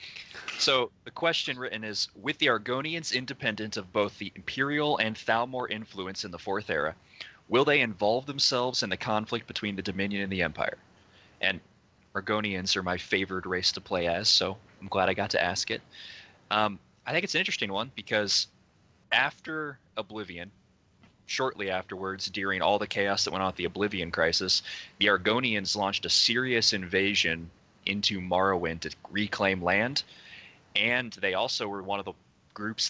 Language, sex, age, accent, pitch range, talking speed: English, male, 20-39, American, 95-110 Hz, 170 wpm